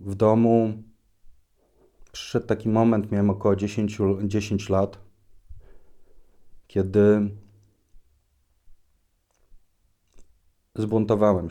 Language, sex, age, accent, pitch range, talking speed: Polish, male, 30-49, native, 90-105 Hz, 65 wpm